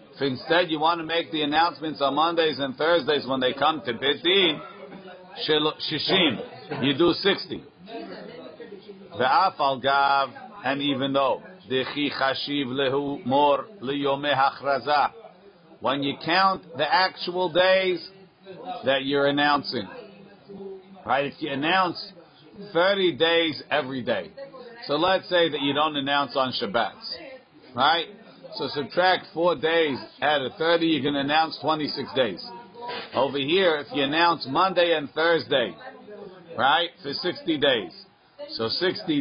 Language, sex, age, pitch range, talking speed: English, male, 50-69, 140-185 Hz, 120 wpm